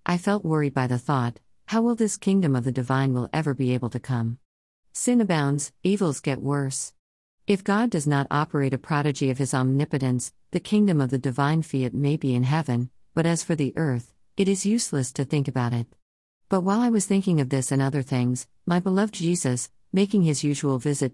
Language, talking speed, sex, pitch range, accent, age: English, 205 wpm, female, 130-180 Hz, American, 50-69